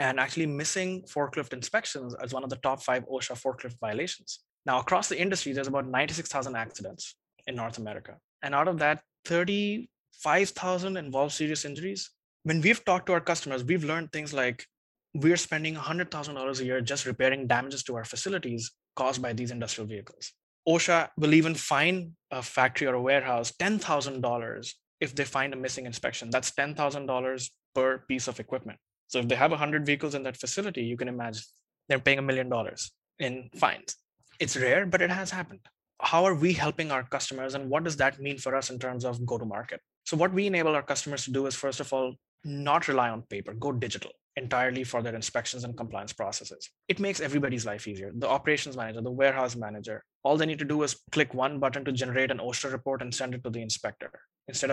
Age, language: 20-39, English